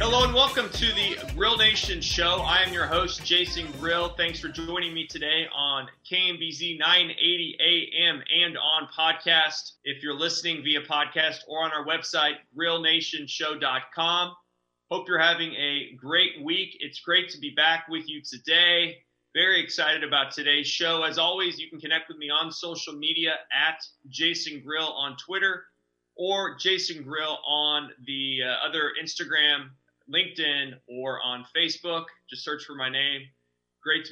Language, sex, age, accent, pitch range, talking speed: English, male, 30-49, American, 140-170 Hz, 155 wpm